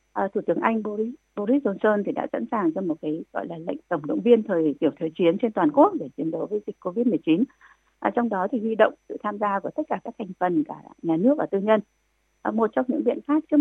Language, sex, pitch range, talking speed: Vietnamese, female, 165-255 Hz, 270 wpm